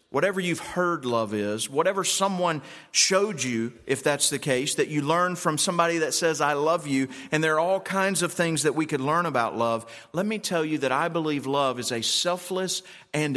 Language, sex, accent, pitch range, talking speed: English, male, American, 130-185 Hz, 215 wpm